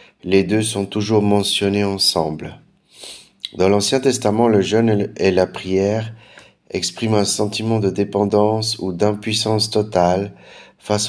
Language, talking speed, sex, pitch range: French, 125 wpm, male, 95-110 Hz